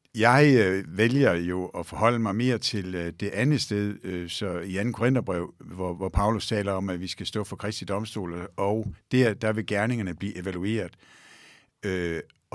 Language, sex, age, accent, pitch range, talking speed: Danish, male, 60-79, native, 95-115 Hz, 180 wpm